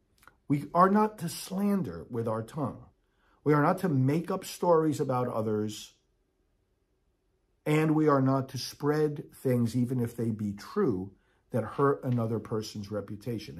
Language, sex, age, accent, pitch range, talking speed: English, male, 50-69, American, 115-155 Hz, 150 wpm